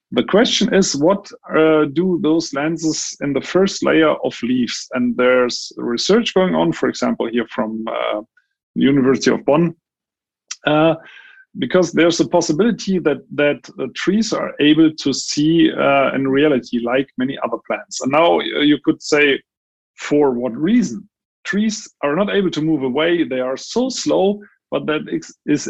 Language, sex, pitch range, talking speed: English, male, 135-185 Hz, 160 wpm